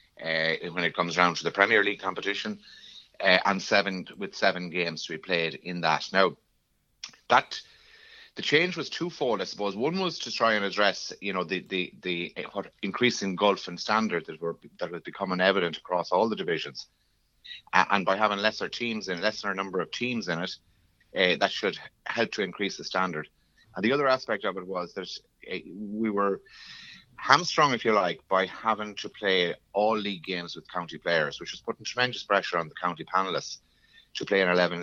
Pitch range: 90-125 Hz